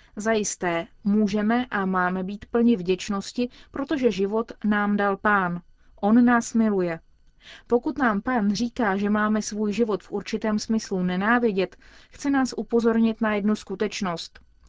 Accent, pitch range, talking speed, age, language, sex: native, 190-230 Hz, 135 wpm, 30-49, Czech, female